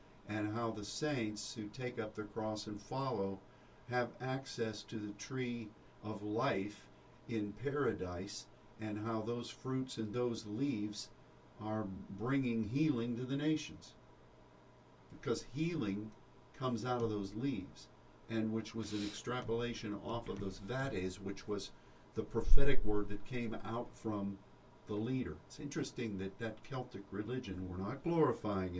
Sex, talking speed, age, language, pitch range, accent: male, 145 wpm, 50-69, English, 105-125 Hz, American